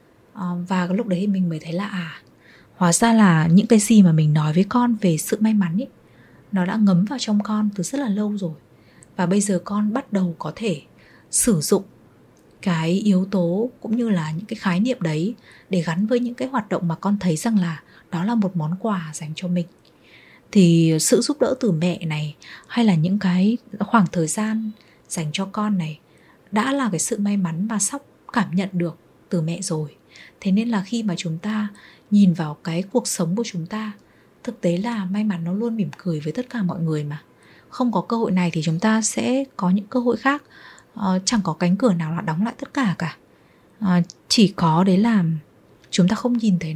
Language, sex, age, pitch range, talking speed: Vietnamese, female, 20-39, 175-220 Hz, 220 wpm